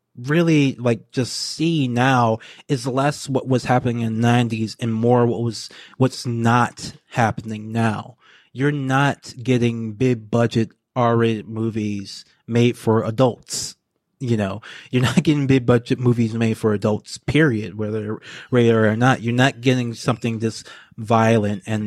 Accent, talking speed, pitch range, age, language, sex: American, 150 wpm, 110-130 Hz, 20-39, English, male